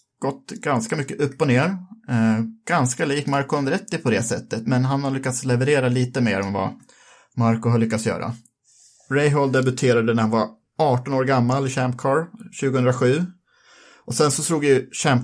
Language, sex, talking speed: Swedish, male, 175 wpm